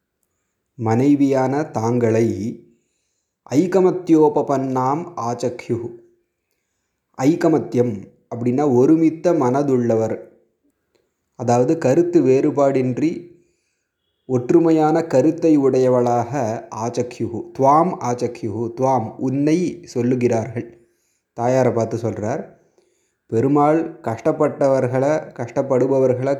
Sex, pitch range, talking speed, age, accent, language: male, 120-150 Hz, 60 wpm, 30-49, native, Tamil